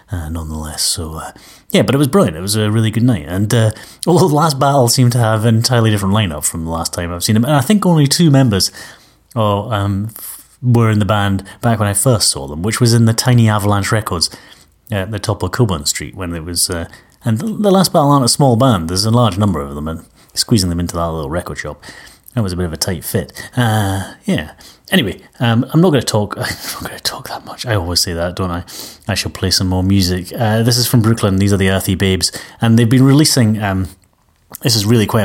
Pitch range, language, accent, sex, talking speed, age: 85-120 Hz, English, British, male, 250 wpm, 30-49